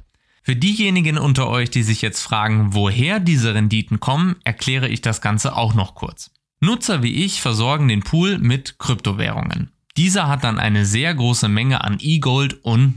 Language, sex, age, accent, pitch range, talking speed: German, male, 20-39, German, 110-150 Hz, 170 wpm